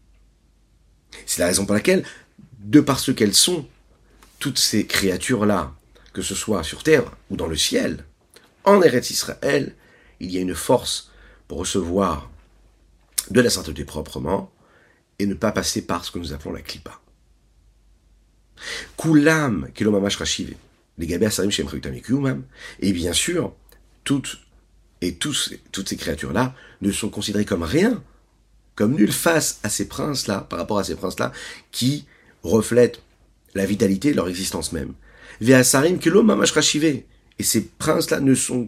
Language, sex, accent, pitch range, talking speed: French, male, French, 90-130 Hz, 145 wpm